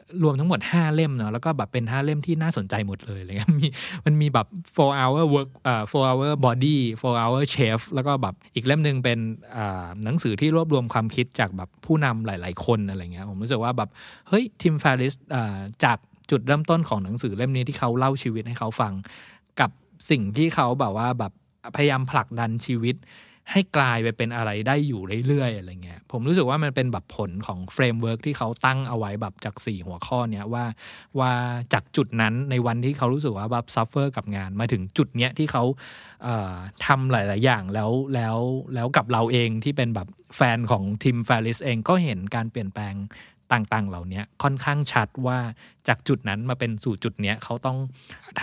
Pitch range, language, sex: 110-140 Hz, Thai, male